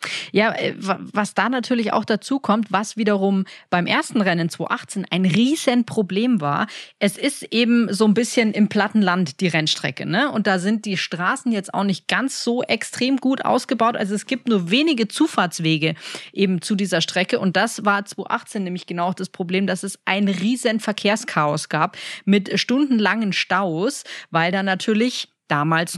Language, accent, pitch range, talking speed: German, German, 180-220 Hz, 170 wpm